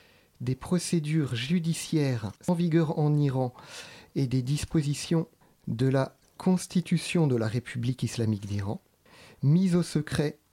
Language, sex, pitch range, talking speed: French, male, 125-155 Hz, 120 wpm